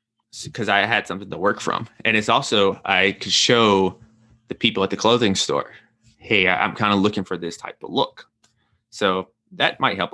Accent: American